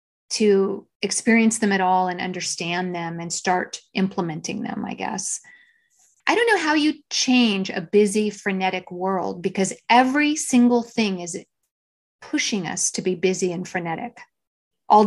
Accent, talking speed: American, 145 wpm